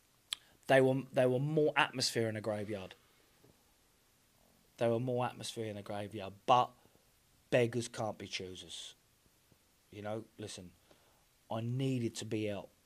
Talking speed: 135 wpm